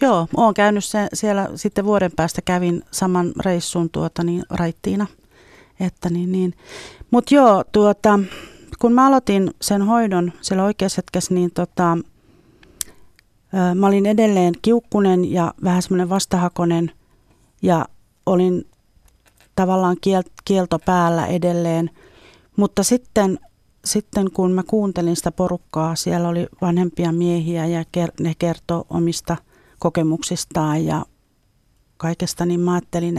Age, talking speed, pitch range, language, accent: 40-59, 115 wpm, 170-195 Hz, Finnish, native